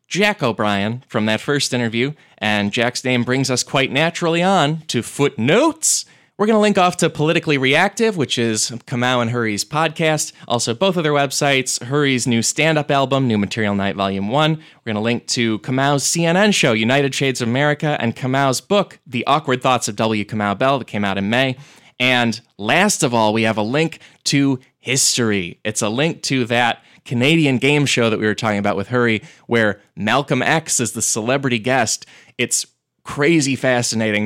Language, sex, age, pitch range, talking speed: English, male, 20-39, 115-155 Hz, 185 wpm